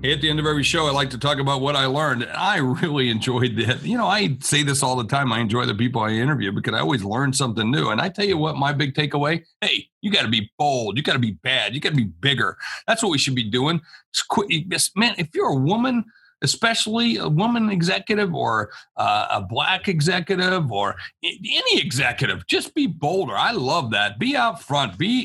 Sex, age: male, 40-59